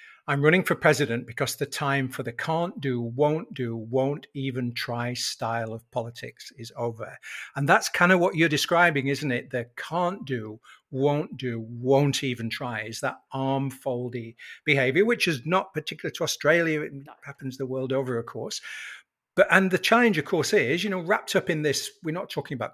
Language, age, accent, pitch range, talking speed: English, 50-69, British, 125-150 Hz, 190 wpm